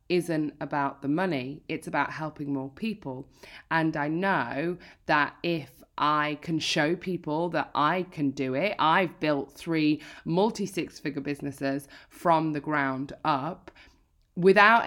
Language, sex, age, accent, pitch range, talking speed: English, female, 20-39, British, 145-200 Hz, 140 wpm